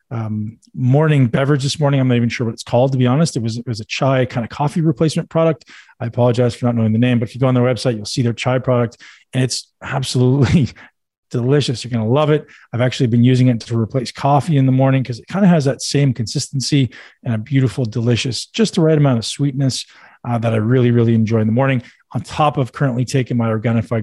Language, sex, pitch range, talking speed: English, male, 120-140 Hz, 245 wpm